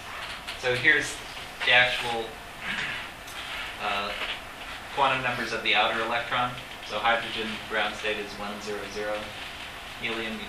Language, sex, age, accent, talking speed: English, male, 30-49, American, 120 wpm